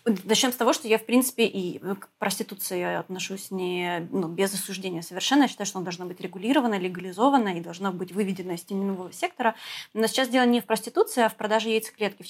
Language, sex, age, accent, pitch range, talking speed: Russian, female, 20-39, native, 200-245 Hz, 205 wpm